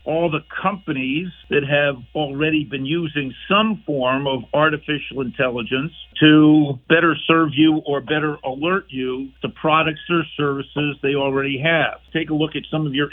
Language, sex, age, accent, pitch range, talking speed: English, male, 50-69, American, 140-160 Hz, 160 wpm